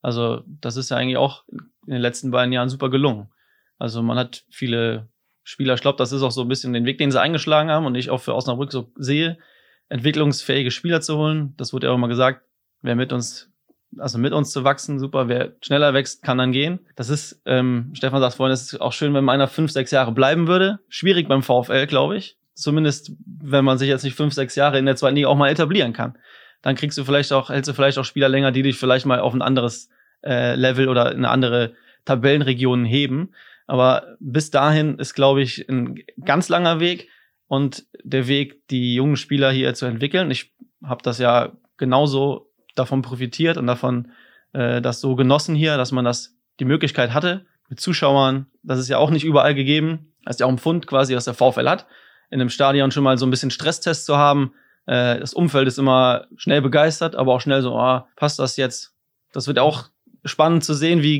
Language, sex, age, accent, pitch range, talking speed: German, male, 20-39, German, 125-150 Hz, 215 wpm